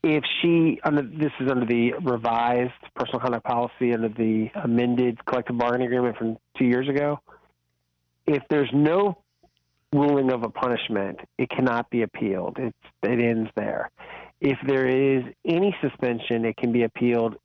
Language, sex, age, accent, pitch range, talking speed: English, male, 40-59, American, 115-130 Hz, 150 wpm